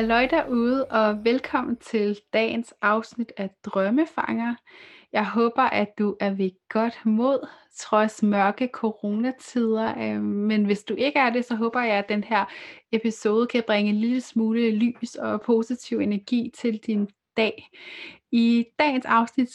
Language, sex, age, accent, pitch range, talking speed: Danish, female, 30-49, native, 210-240 Hz, 145 wpm